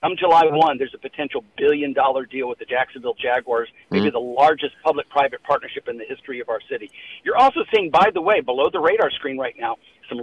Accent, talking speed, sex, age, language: American, 210 wpm, male, 50-69, English